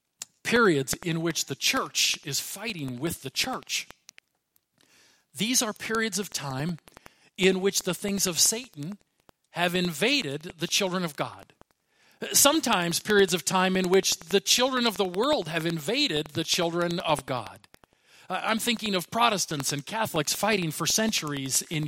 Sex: male